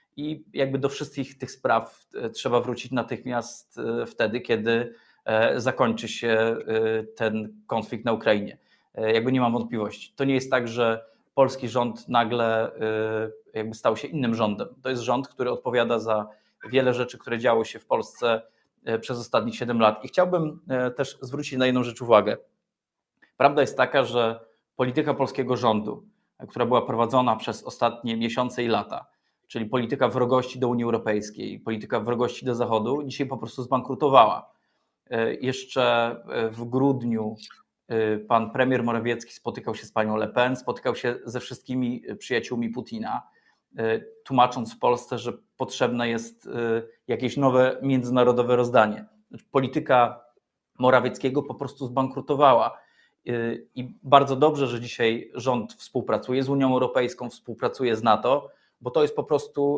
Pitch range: 115-130 Hz